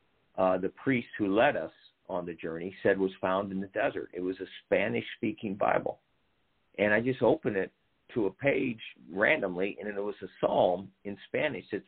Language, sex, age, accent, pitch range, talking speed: English, male, 50-69, American, 95-115 Hz, 185 wpm